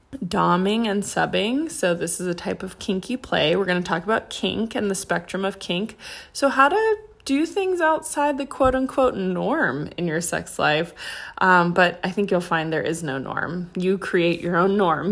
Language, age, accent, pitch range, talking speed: English, 20-39, American, 175-225 Hz, 200 wpm